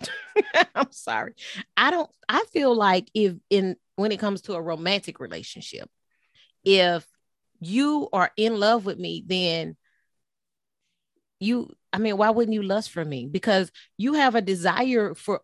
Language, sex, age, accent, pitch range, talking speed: English, female, 30-49, American, 165-210 Hz, 150 wpm